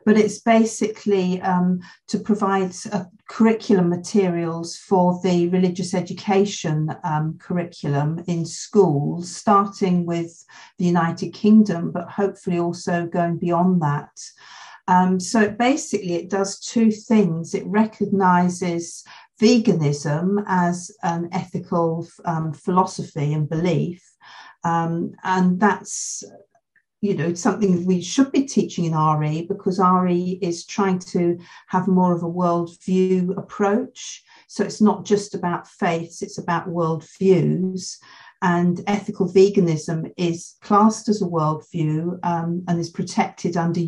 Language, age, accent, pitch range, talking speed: English, 50-69, British, 170-200 Hz, 125 wpm